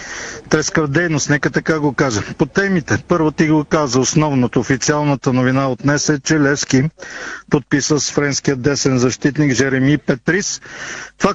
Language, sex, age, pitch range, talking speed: Bulgarian, male, 50-69, 135-165 Hz, 135 wpm